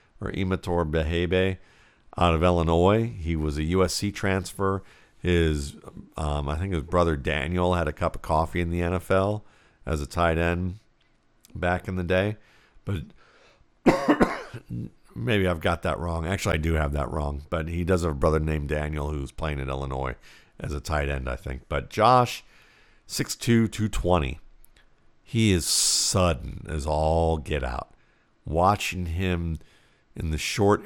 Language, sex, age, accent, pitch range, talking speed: English, male, 50-69, American, 75-95 Hz, 155 wpm